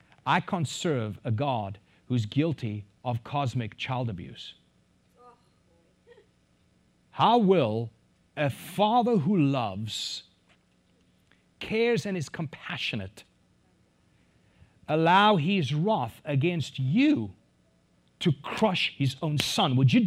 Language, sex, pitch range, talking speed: English, male, 100-165 Hz, 100 wpm